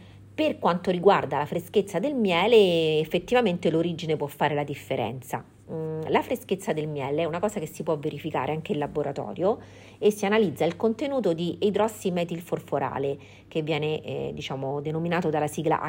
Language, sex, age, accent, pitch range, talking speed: Italian, female, 40-59, native, 145-185 Hz, 150 wpm